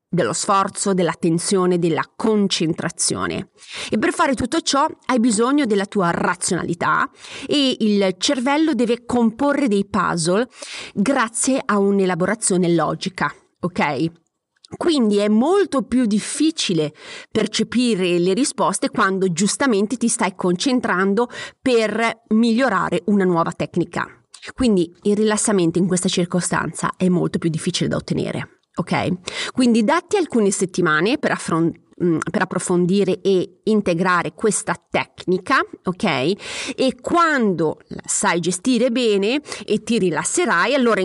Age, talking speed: 30-49, 120 wpm